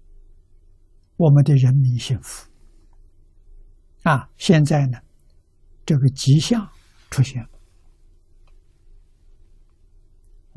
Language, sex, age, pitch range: Chinese, male, 60-79, 80-135 Hz